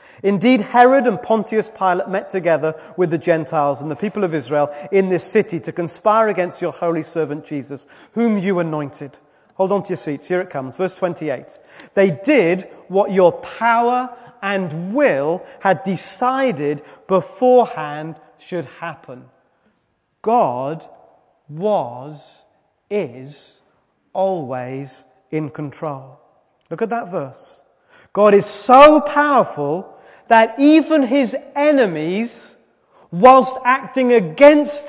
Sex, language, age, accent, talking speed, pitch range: male, English, 40-59, British, 120 wpm, 165-245 Hz